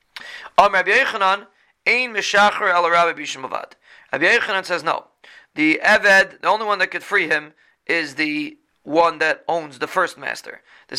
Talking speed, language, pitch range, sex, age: 120 wpm, English, 155-195 Hz, male, 30-49